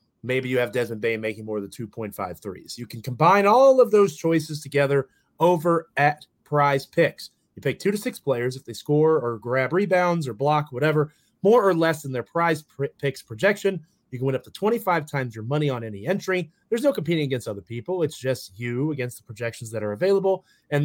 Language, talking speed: English, 210 wpm